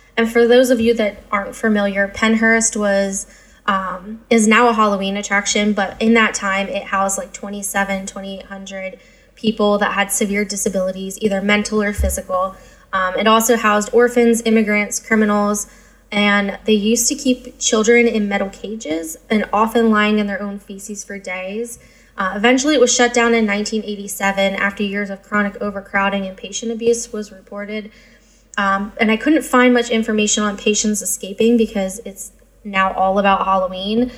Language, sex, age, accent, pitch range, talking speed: English, female, 10-29, American, 200-235 Hz, 160 wpm